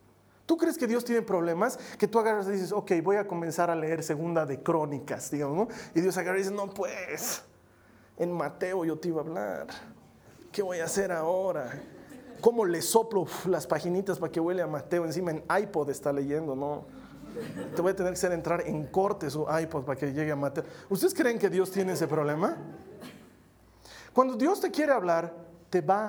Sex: male